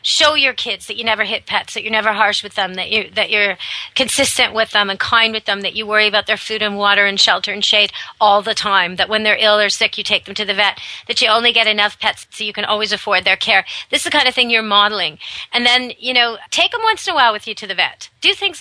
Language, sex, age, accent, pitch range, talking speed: English, female, 40-59, American, 200-245 Hz, 290 wpm